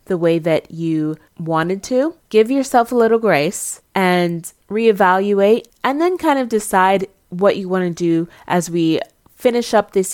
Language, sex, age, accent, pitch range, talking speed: English, female, 20-39, American, 170-220 Hz, 165 wpm